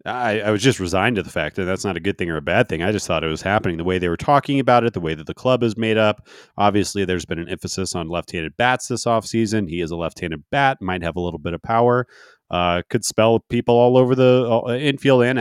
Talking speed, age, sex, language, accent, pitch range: 275 wpm, 30-49, male, English, American, 95-125 Hz